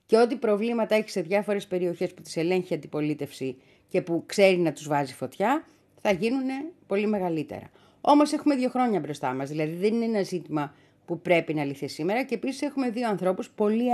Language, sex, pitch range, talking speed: Greek, female, 160-235 Hz, 190 wpm